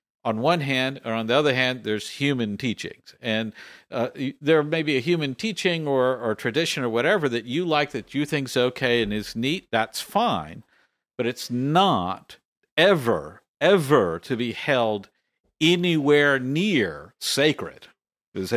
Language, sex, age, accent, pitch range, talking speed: English, male, 50-69, American, 115-150 Hz, 160 wpm